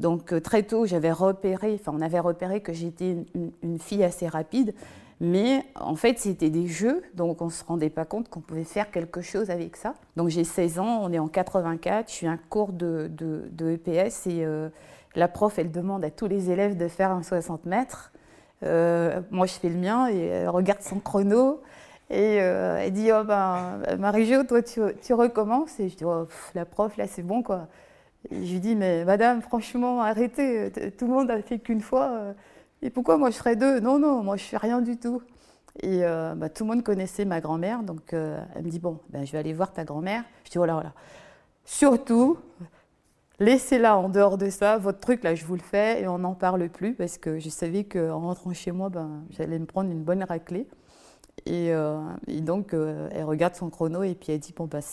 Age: 20-39